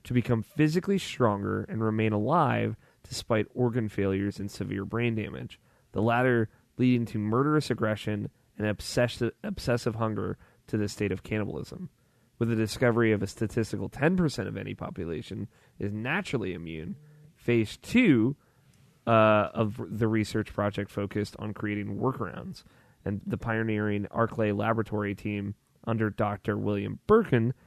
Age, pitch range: 20-39, 105-125 Hz